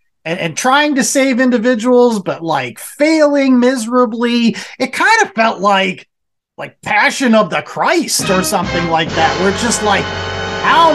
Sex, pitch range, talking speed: male, 160-255 Hz, 160 wpm